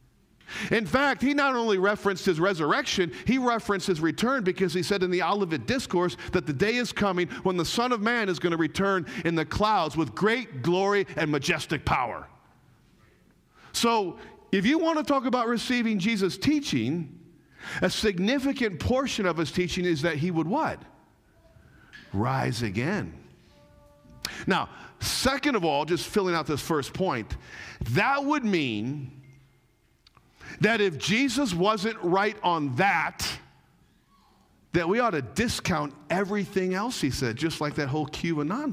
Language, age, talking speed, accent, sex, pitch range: English, 50-69, 155 wpm, American, male, 160-220 Hz